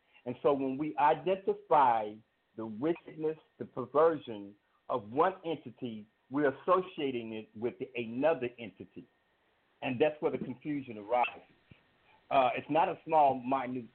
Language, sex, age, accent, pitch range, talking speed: English, male, 50-69, American, 120-150 Hz, 130 wpm